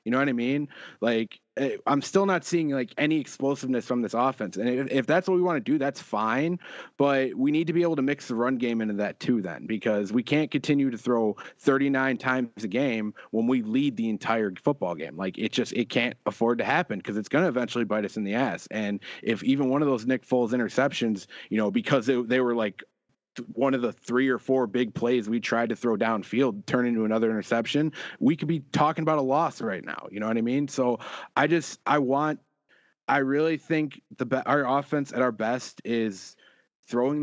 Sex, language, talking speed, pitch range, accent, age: male, English, 225 wpm, 120-140 Hz, American, 30-49